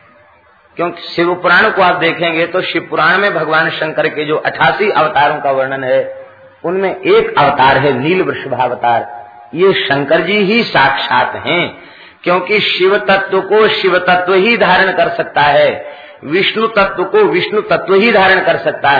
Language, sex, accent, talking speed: Hindi, male, native, 160 wpm